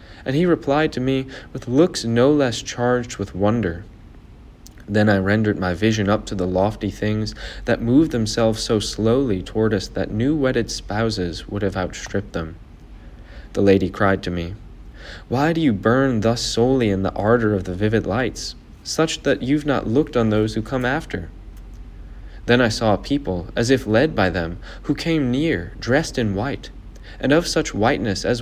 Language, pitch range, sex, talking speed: English, 95-120 Hz, male, 180 wpm